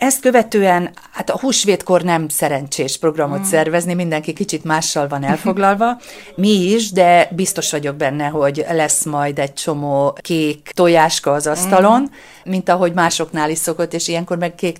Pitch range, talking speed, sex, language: 145-180 Hz, 155 wpm, female, Hungarian